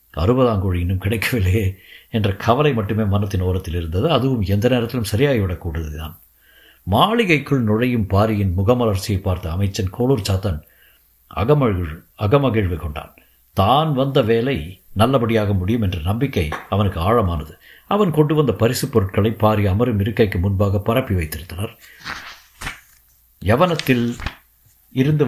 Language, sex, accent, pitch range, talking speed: Tamil, male, native, 95-120 Hz, 115 wpm